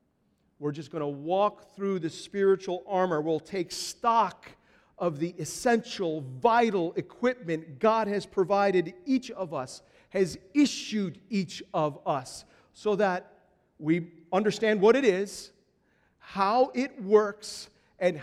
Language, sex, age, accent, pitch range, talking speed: English, male, 40-59, American, 160-205 Hz, 130 wpm